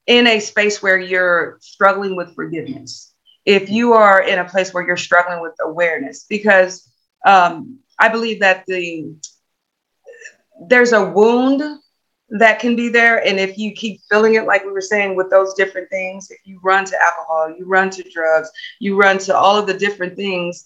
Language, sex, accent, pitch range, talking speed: English, female, American, 175-210 Hz, 185 wpm